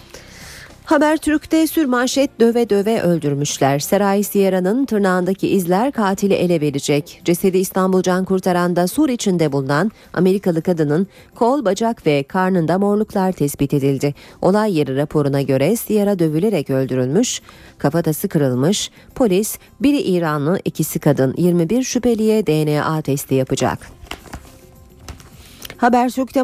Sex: female